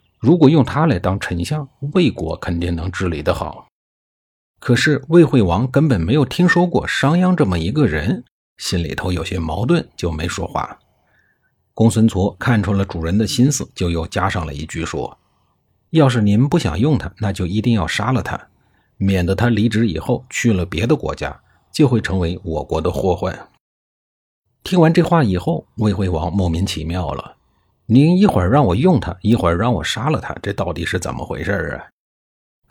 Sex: male